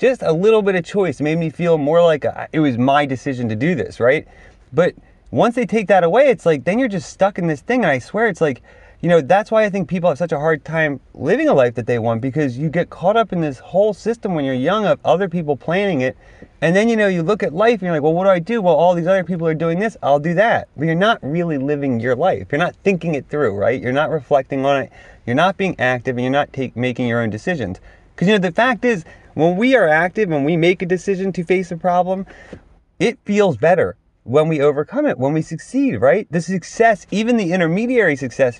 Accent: American